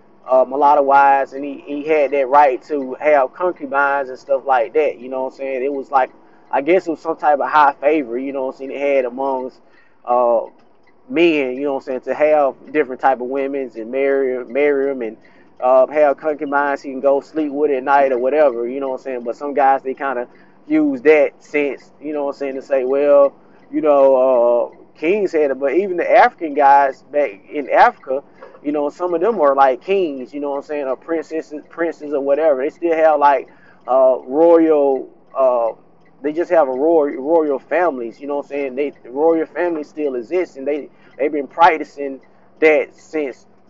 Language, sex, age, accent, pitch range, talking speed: English, male, 20-39, American, 135-155 Hz, 220 wpm